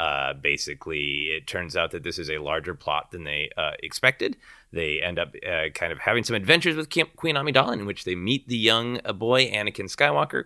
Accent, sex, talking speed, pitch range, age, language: American, male, 210 wpm, 85-125 Hz, 30-49, English